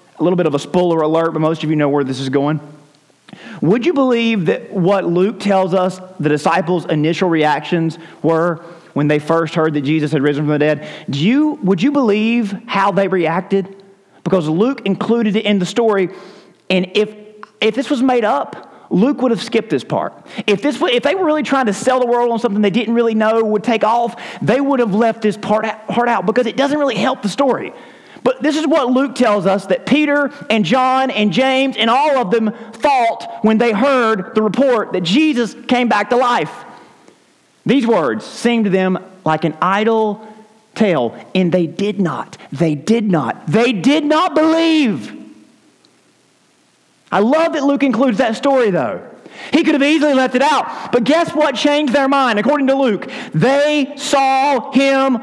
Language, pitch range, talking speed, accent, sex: English, 185-260 Hz, 195 wpm, American, male